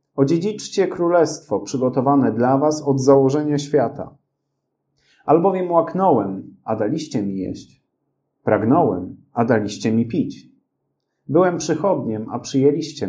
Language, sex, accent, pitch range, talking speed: Polish, male, native, 115-155 Hz, 105 wpm